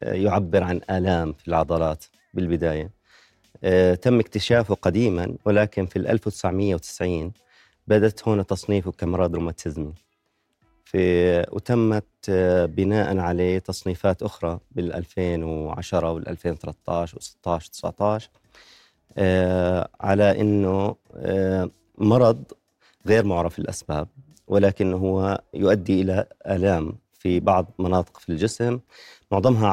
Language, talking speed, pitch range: Arabic, 95 wpm, 90-105 Hz